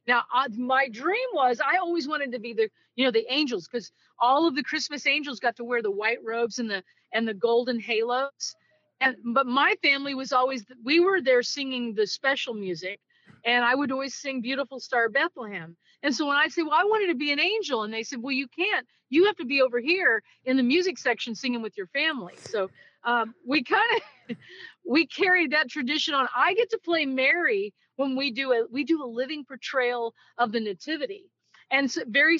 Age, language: 40-59, English